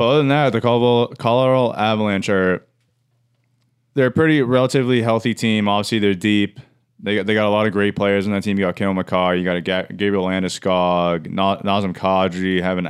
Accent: American